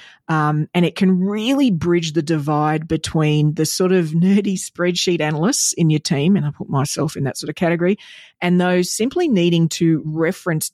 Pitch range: 155-180 Hz